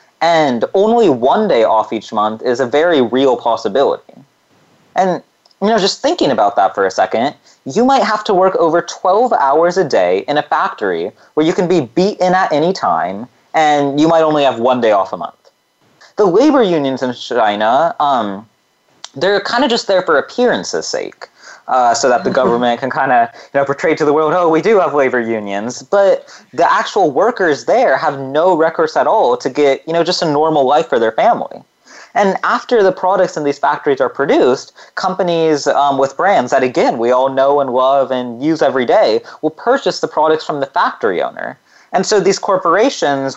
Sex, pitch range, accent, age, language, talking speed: male, 135-185 Hz, American, 20-39, English, 200 wpm